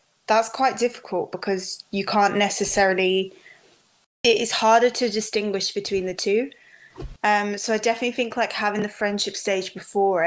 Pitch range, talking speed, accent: 195-225 Hz, 150 wpm, British